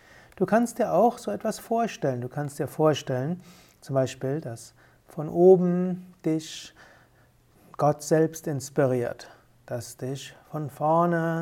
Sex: male